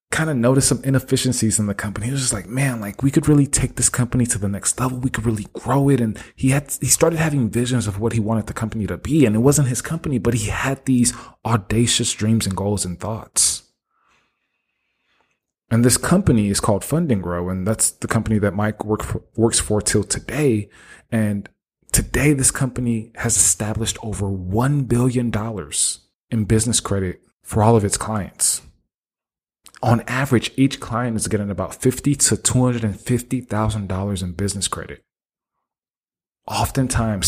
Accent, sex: American, male